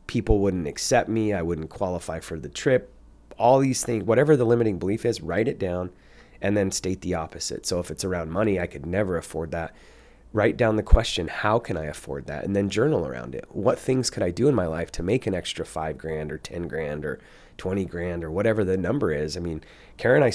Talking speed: 235 wpm